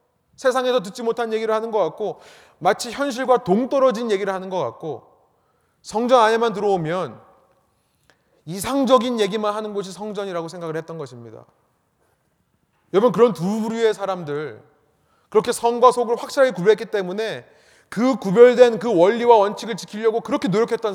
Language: Korean